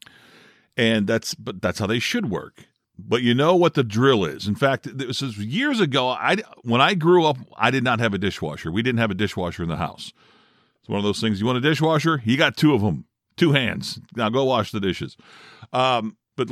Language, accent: English, American